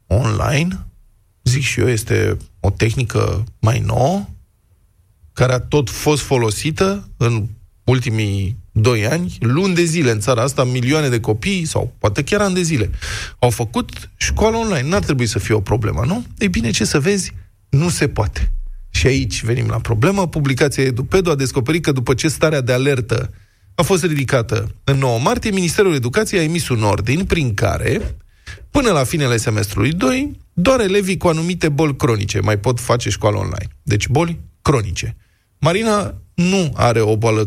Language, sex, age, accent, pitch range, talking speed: Romanian, male, 20-39, native, 105-150 Hz, 170 wpm